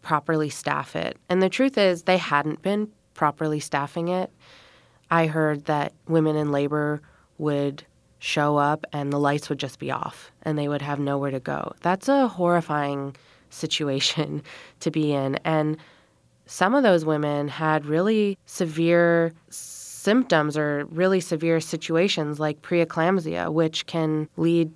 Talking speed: 150 wpm